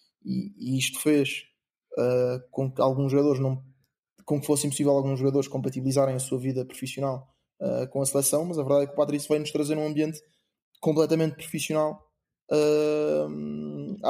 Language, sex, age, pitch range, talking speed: Portuguese, male, 20-39, 140-160 Hz, 170 wpm